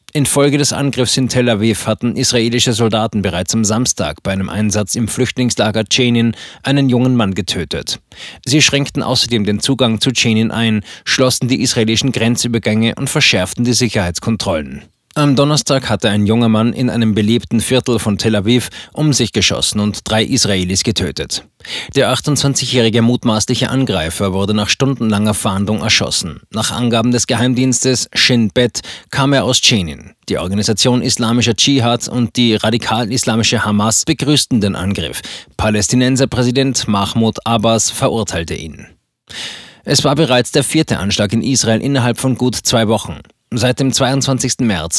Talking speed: 150 wpm